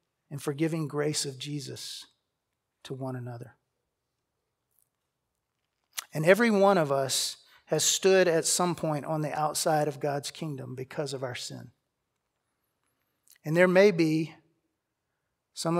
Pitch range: 150-195 Hz